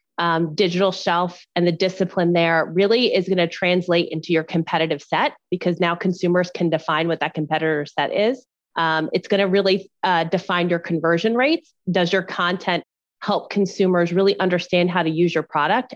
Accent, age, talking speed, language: American, 20-39, 175 wpm, English